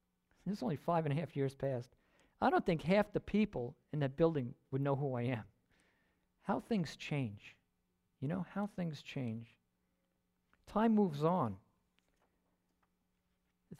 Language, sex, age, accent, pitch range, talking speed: English, male, 50-69, American, 110-160 Hz, 150 wpm